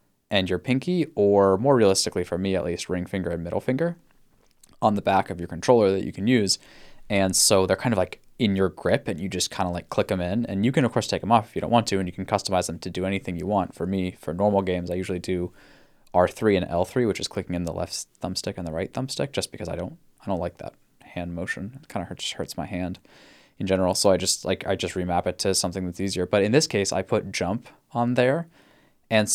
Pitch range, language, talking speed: 90-110 Hz, English, 265 wpm